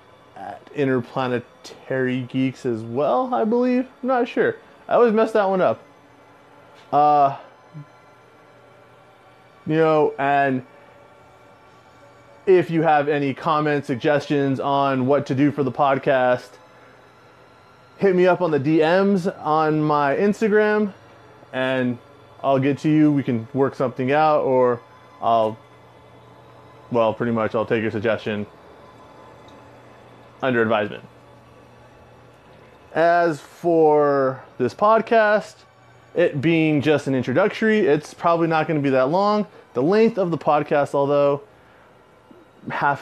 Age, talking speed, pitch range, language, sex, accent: 20-39, 120 wpm, 125-155 Hz, English, male, American